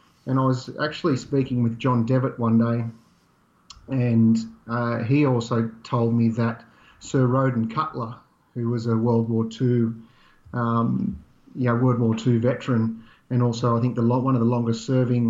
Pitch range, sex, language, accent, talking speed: 115-130 Hz, male, English, Australian, 160 wpm